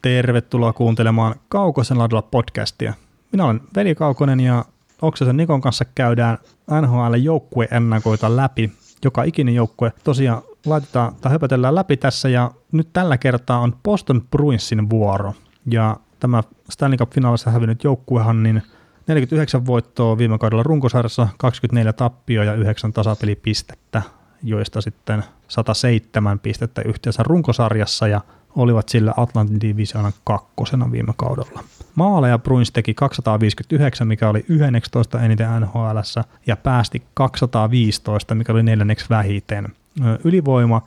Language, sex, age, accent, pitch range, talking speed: Finnish, male, 30-49, native, 110-130 Hz, 120 wpm